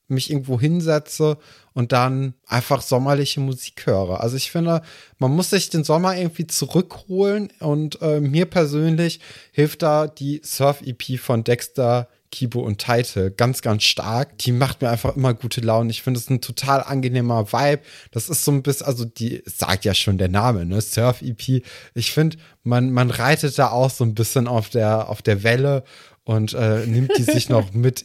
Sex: male